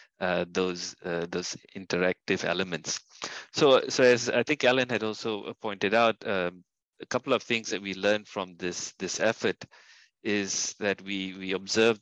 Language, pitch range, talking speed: English, 90-110 Hz, 165 wpm